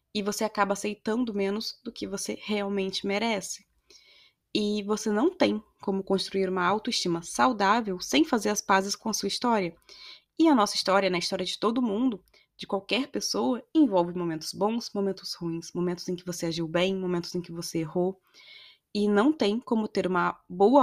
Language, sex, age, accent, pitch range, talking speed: Portuguese, female, 20-39, Brazilian, 185-225 Hz, 180 wpm